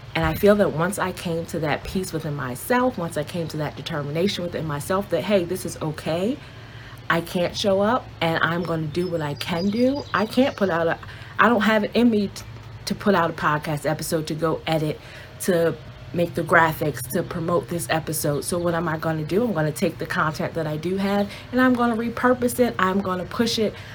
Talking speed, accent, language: 220 wpm, American, English